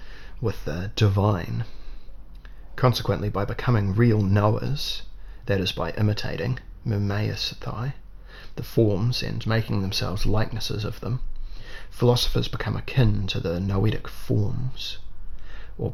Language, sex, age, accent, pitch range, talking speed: English, male, 30-49, Australian, 95-120 Hz, 110 wpm